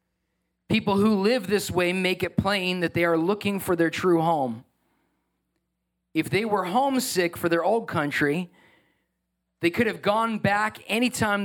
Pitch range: 160-210 Hz